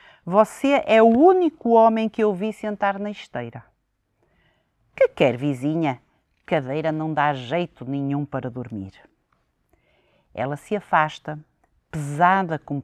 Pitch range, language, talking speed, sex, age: 150-230 Hz, Portuguese, 120 wpm, female, 50-69